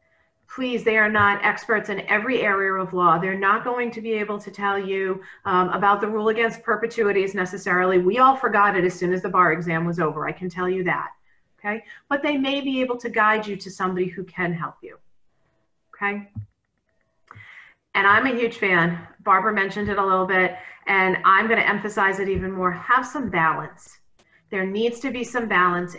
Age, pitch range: 40-59, 175-225 Hz